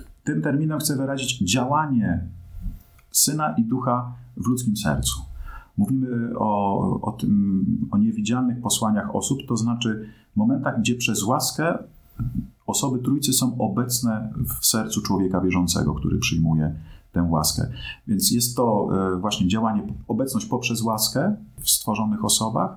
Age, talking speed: 40-59, 130 wpm